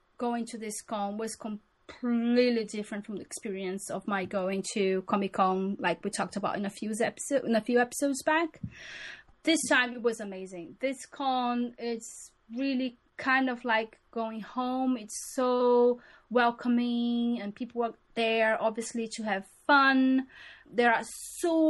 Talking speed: 160 wpm